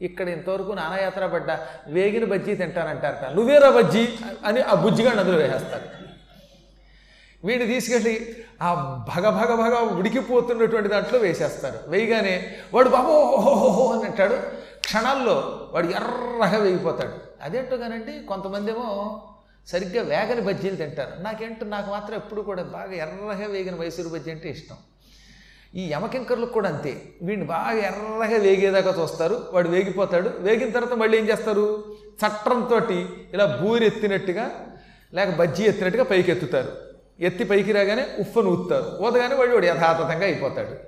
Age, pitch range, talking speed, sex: 30-49, 165-220 Hz, 125 wpm, male